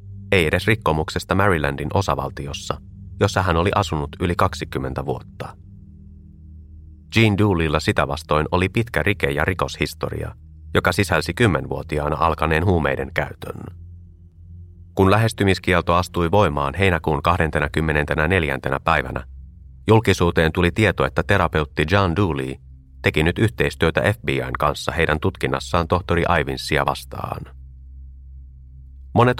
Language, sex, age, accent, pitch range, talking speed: Finnish, male, 30-49, native, 70-95 Hz, 105 wpm